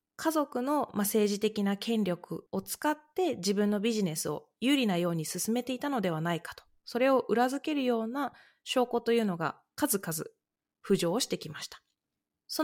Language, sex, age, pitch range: Japanese, female, 20-39, 200-275 Hz